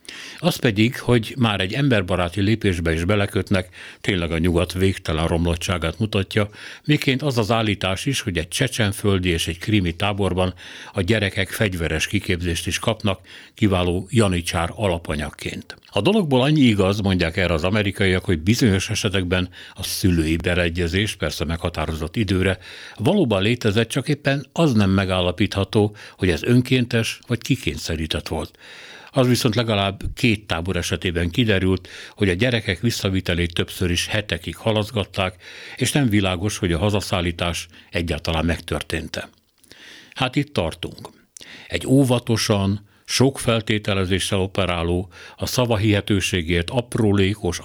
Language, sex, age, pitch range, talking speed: Hungarian, male, 60-79, 90-110 Hz, 125 wpm